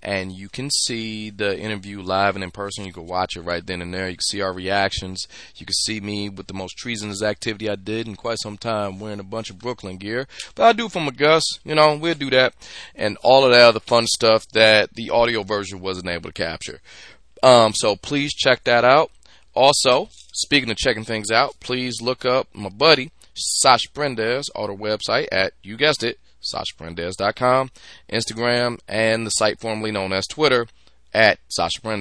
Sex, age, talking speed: male, 30-49, 200 wpm